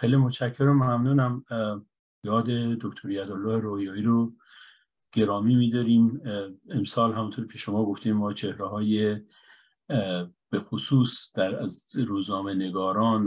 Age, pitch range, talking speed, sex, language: 50-69, 95-115 Hz, 110 wpm, male, Persian